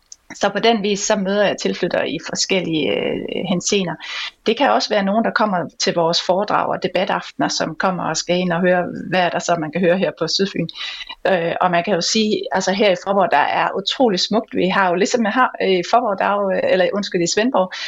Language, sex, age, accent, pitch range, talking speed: Danish, female, 30-49, native, 180-225 Hz, 230 wpm